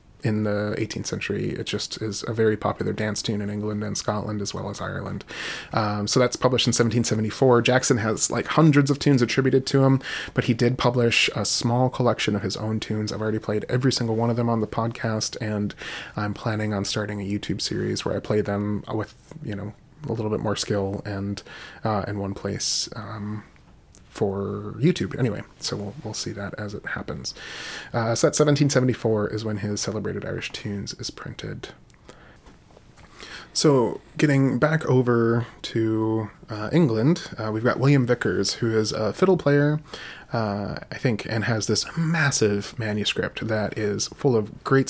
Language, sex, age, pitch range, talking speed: English, male, 30-49, 105-125 Hz, 180 wpm